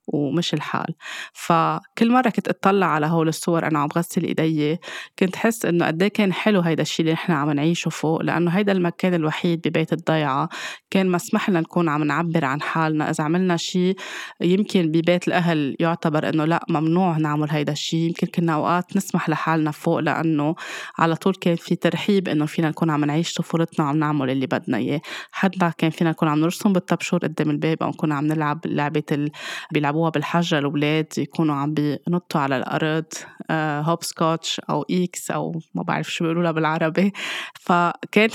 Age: 20-39